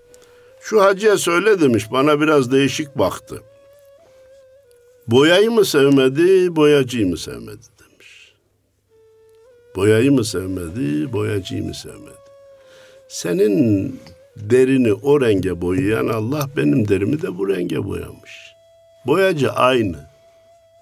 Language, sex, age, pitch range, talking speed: Turkish, male, 60-79, 110-170 Hz, 100 wpm